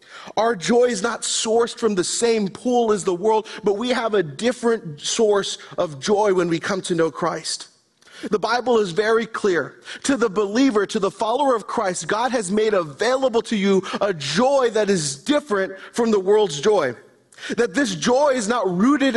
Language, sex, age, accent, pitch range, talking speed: English, male, 40-59, American, 205-255 Hz, 190 wpm